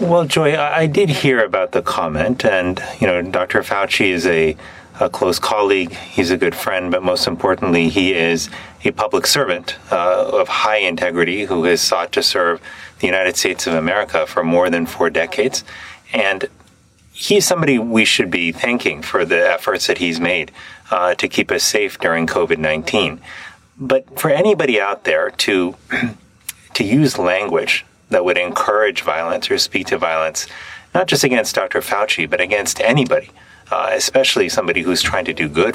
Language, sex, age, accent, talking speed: English, male, 30-49, American, 170 wpm